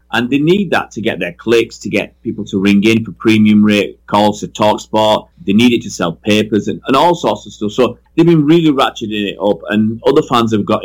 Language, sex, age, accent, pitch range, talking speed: English, male, 30-49, British, 100-135 Hz, 250 wpm